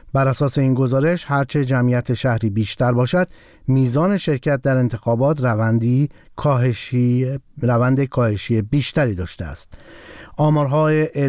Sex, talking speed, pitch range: male, 110 wpm, 125-155 Hz